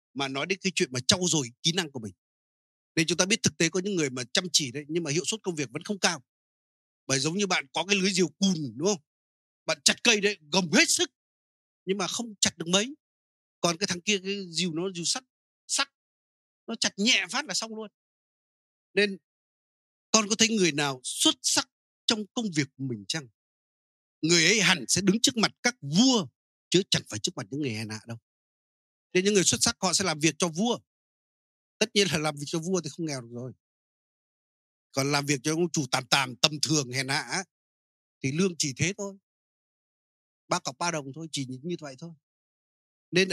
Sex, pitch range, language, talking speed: male, 135-195 Hz, Vietnamese, 220 wpm